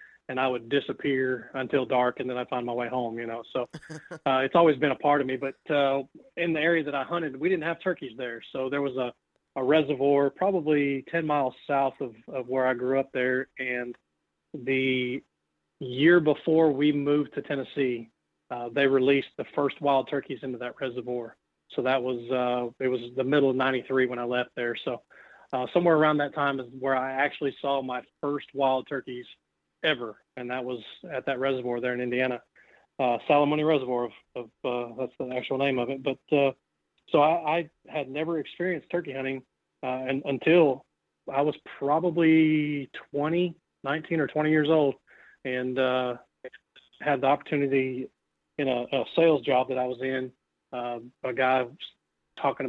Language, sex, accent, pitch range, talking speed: English, male, American, 125-145 Hz, 185 wpm